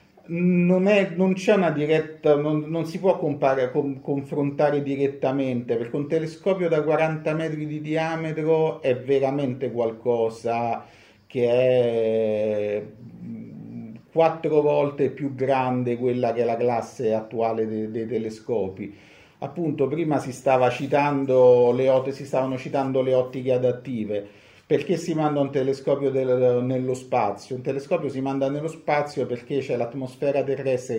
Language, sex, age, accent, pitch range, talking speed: Italian, male, 50-69, native, 120-150 Hz, 130 wpm